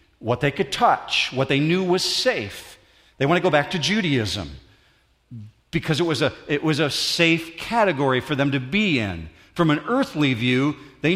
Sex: male